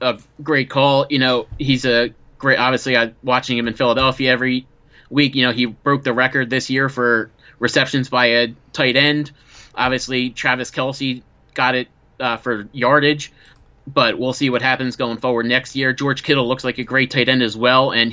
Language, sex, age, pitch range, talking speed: English, male, 30-49, 125-140 Hz, 190 wpm